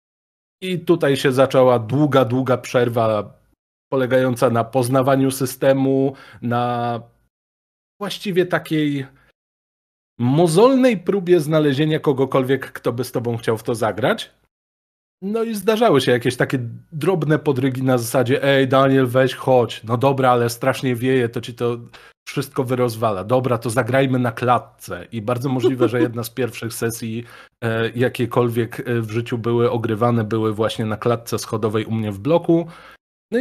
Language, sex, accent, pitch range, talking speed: Polish, male, native, 115-140 Hz, 140 wpm